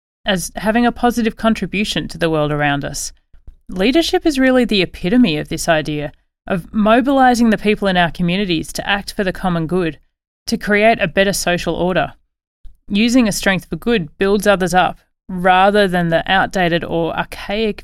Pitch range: 170-220 Hz